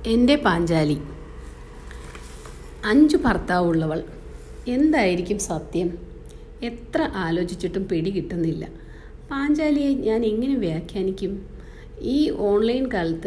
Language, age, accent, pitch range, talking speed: English, 50-69, Indian, 170-225 Hz, 90 wpm